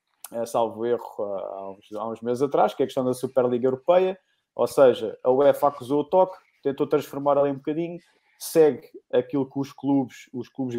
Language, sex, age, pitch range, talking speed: Portuguese, male, 20-39, 120-140 Hz, 180 wpm